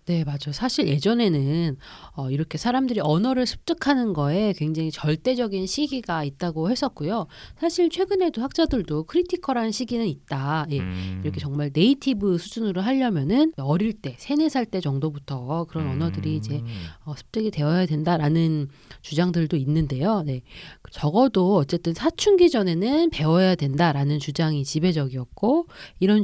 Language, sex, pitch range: Korean, female, 150-235 Hz